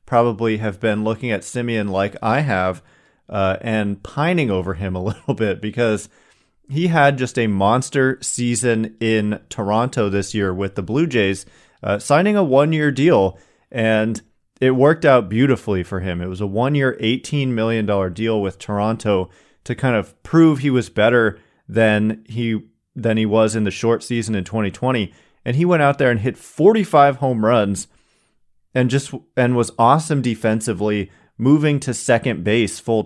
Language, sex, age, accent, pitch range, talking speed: English, male, 30-49, American, 105-130 Hz, 165 wpm